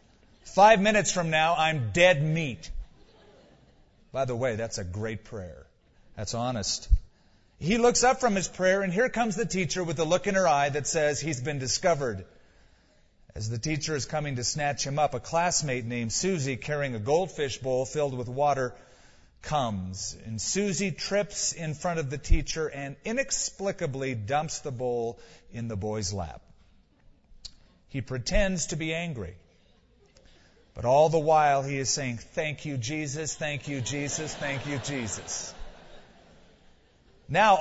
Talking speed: 155 wpm